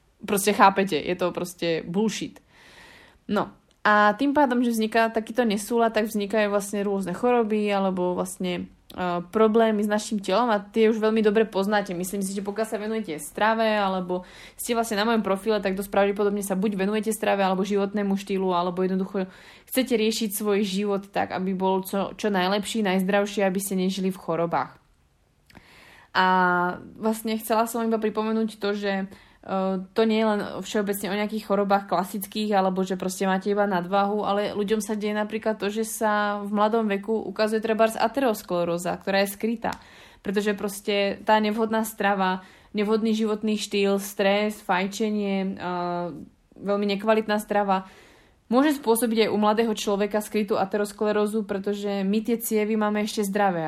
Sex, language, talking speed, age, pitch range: female, Slovak, 160 wpm, 20-39, 195-220 Hz